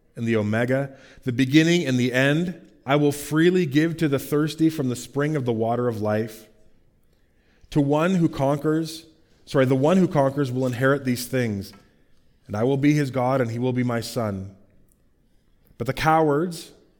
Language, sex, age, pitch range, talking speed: English, male, 30-49, 115-145 Hz, 180 wpm